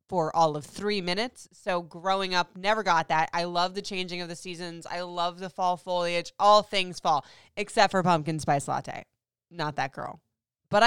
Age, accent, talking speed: 20-39, American, 195 wpm